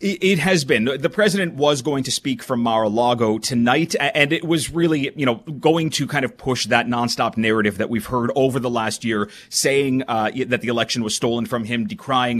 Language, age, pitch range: English, 30-49, 110-130 Hz